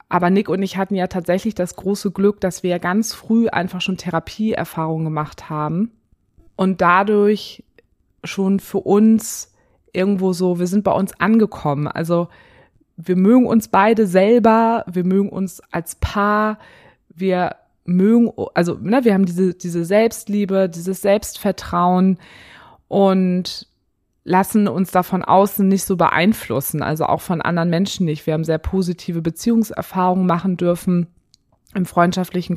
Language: German